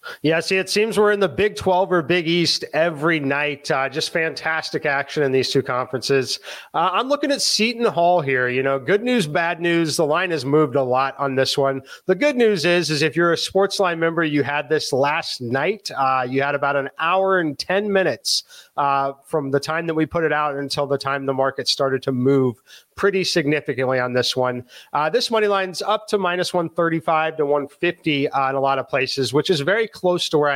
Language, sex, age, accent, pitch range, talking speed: English, male, 30-49, American, 135-175 Hz, 225 wpm